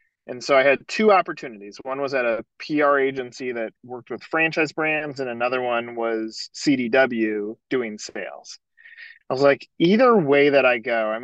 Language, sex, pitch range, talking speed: English, male, 115-145 Hz, 175 wpm